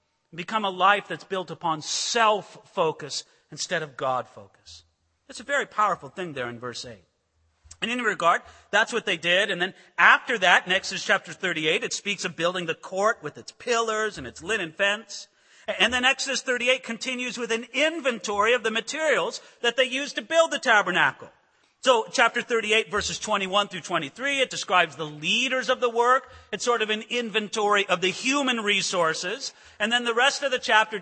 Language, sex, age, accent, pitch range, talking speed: English, male, 40-59, American, 185-260 Hz, 185 wpm